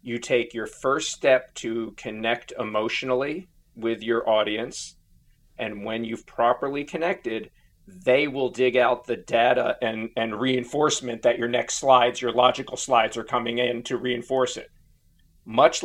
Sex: male